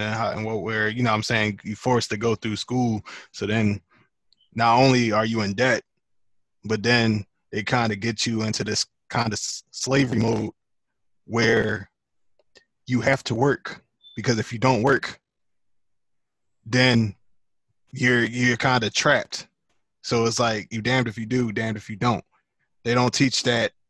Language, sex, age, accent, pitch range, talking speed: English, male, 20-39, American, 110-130 Hz, 175 wpm